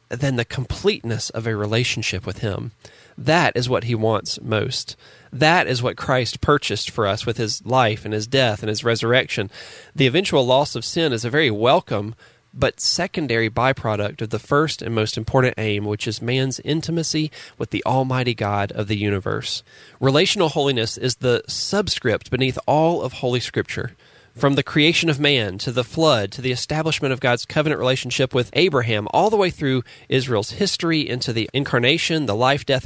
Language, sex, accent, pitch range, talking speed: English, male, American, 115-145 Hz, 180 wpm